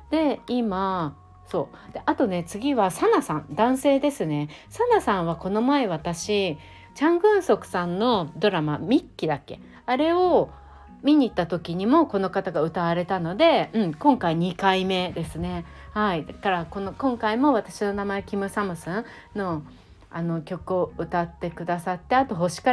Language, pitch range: Japanese, 165-230 Hz